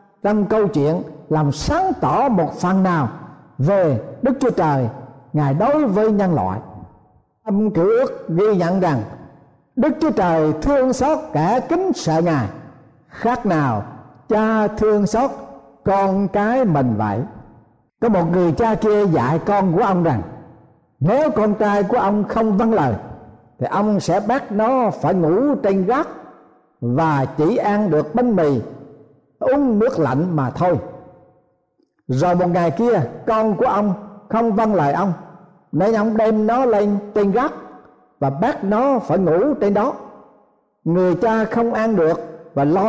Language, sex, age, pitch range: Vietnamese, male, 60-79, 150-220 Hz